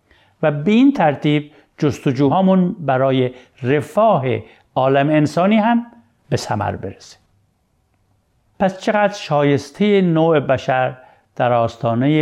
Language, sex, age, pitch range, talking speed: Persian, male, 60-79, 115-165 Hz, 100 wpm